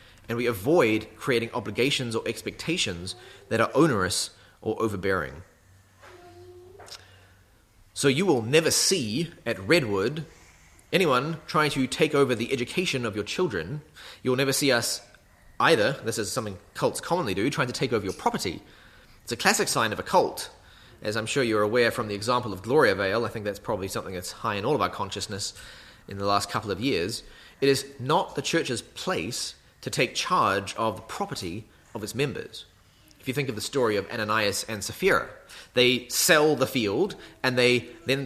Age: 30-49